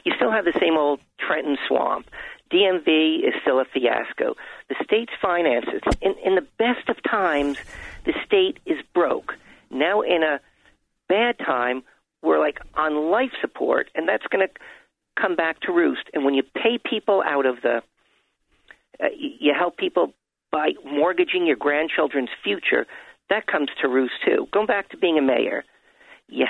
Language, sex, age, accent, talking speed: English, male, 50-69, American, 165 wpm